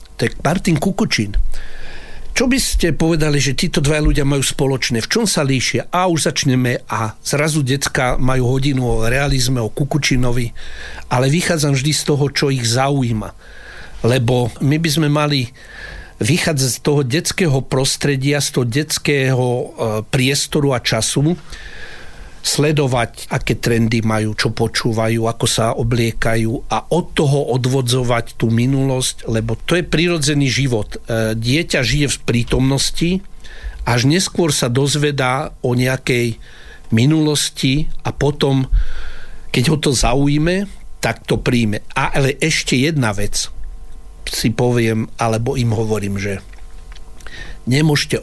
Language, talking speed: Slovak, 130 wpm